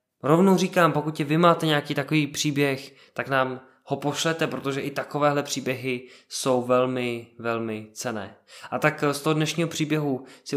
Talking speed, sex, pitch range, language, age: 160 wpm, male, 125-140 Hz, Czech, 20-39